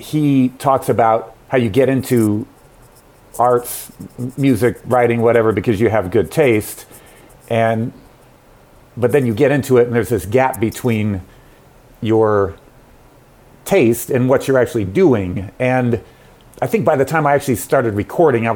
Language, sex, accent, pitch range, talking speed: English, male, American, 105-130 Hz, 150 wpm